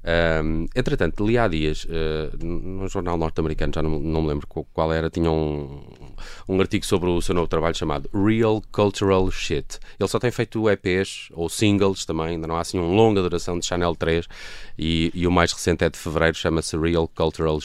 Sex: male